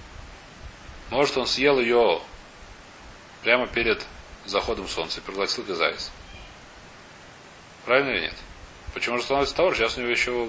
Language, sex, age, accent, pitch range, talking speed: Russian, male, 30-49, native, 95-140 Hz, 130 wpm